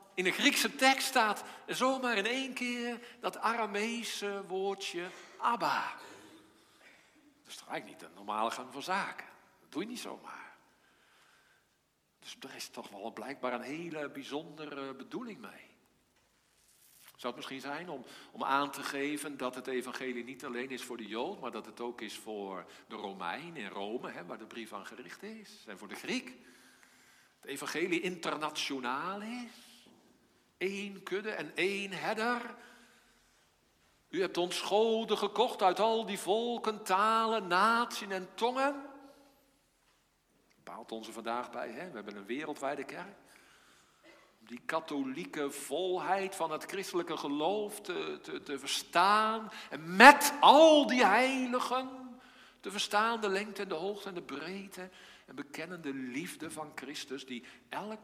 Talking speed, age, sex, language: 150 wpm, 50-69, male, Dutch